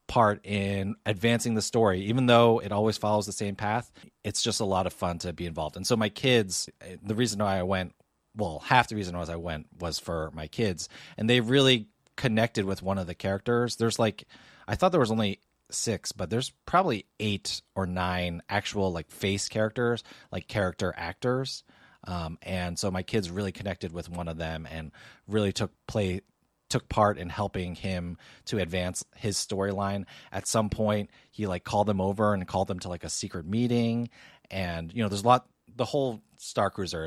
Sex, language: male, English